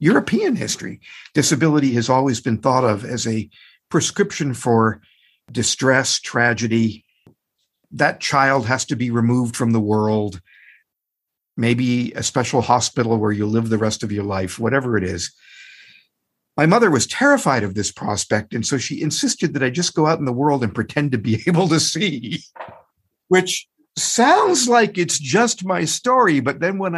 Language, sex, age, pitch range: English, male, 50-69, 120-185 Hz